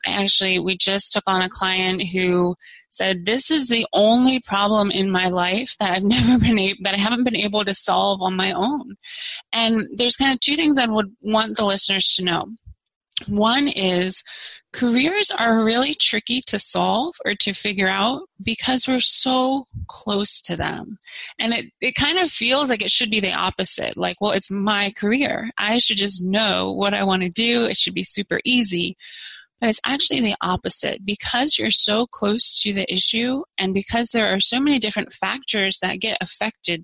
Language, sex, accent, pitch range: English, female, American, 195-245 Hz